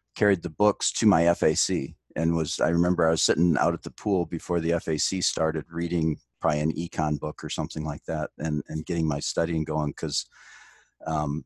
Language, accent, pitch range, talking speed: English, American, 80-95 Hz, 200 wpm